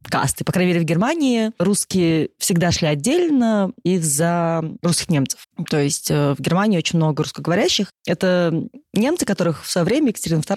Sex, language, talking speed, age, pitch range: female, Russian, 155 wpm, 20-39, 155-205 Hz